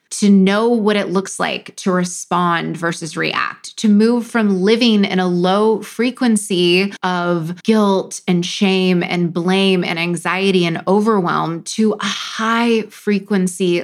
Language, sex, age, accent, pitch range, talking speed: English, female, 20-39, American, 190-245 Hz, 135 wpm